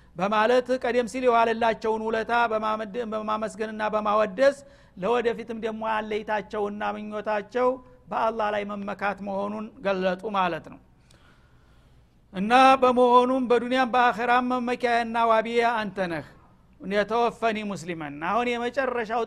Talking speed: 95 wpm